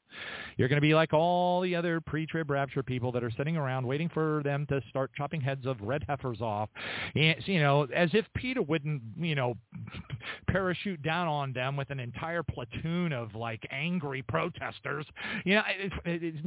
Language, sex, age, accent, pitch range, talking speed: English, male, 40-59, American, 125-160 Hz, 185 wpm